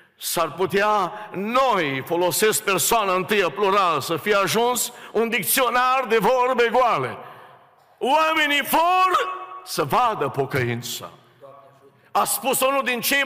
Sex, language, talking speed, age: male, Romanian, 115 wpm, 60-79